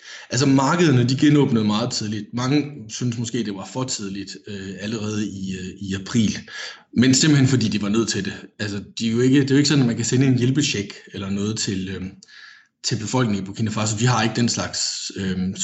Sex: male